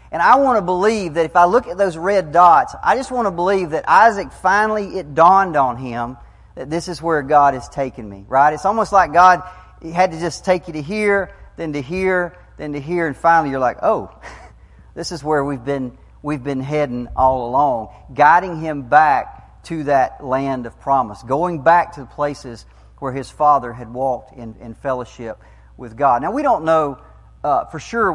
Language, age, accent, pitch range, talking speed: English, 40-59, American, 125-165 Hz, 205 wpm